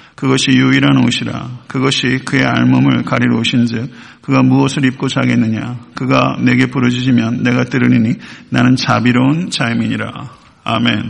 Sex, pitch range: male, 120-140 Hz